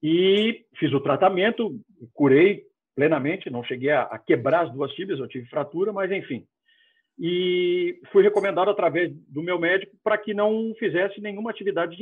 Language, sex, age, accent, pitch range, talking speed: Portuguese, male, 50-69, Brazilian, 155-225 Hz, 165 wpm